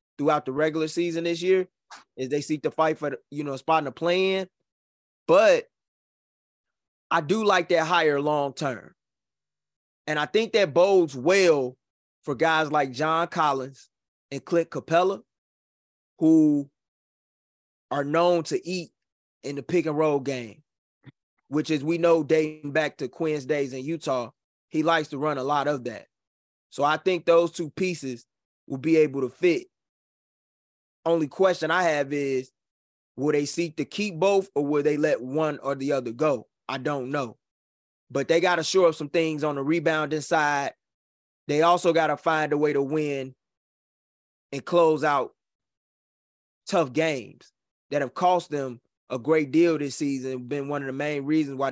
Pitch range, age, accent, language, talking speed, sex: 135-165 Hz, 20-39, American, English, 170 wpm, male